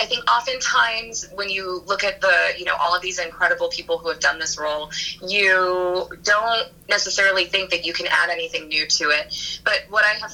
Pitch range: 165-200 Hz